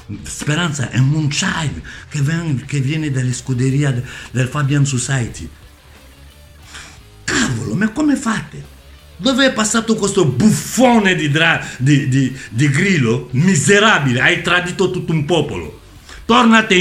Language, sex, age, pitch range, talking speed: Italian, male, 60-79, 125-180 Hz, 120 wpm